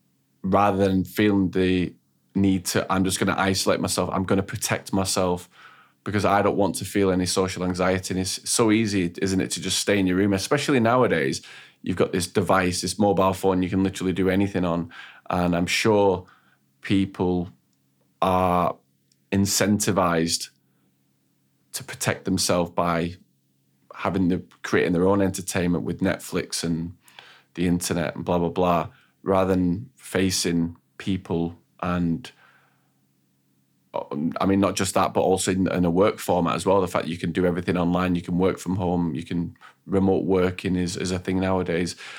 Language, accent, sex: English, British, male